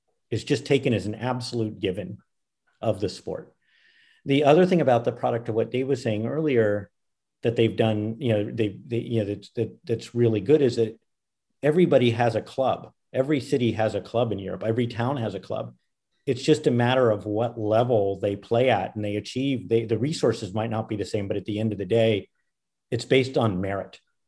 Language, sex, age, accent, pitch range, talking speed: English, male, 50-69, American, 105-125 Hz, 215 wpm